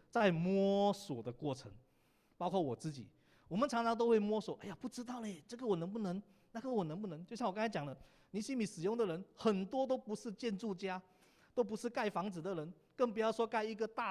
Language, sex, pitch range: Chinese, male, 150-225 Hz